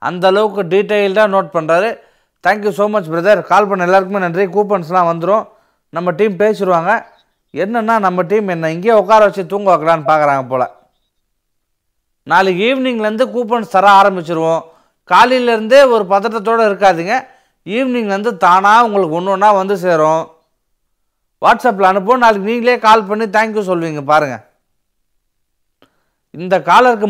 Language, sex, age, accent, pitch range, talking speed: Tamil, male, 30-49, native, 165-215 Hz, 120 wpm